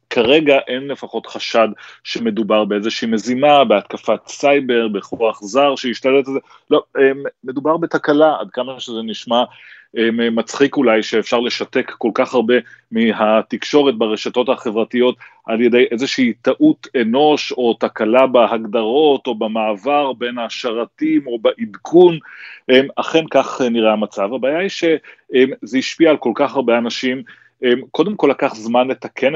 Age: 30-49